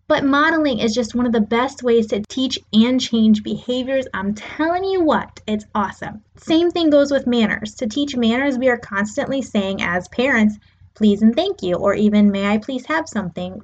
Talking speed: 200 wpm